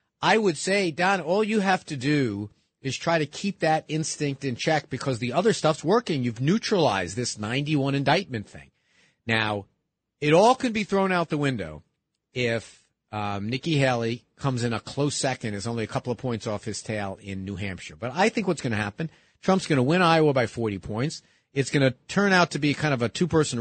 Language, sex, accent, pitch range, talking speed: English, male, American, 120-170 Hz, 215 wpm